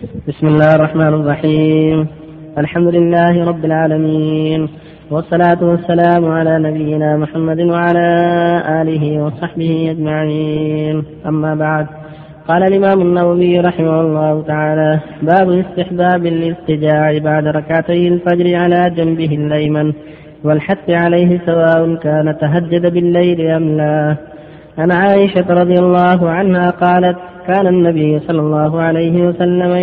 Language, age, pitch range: Arabic, 20-39, 155-180 Hz